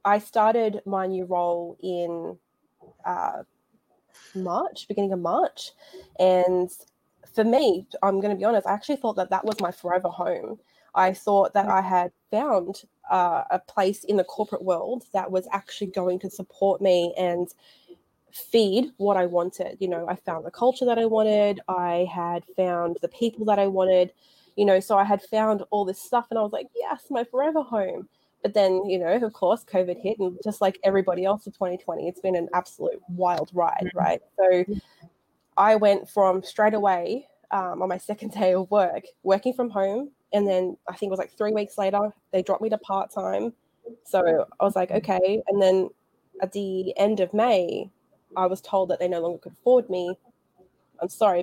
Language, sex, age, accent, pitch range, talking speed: English, female, 20-39, Australian, 185-215 Hz, 195 wpm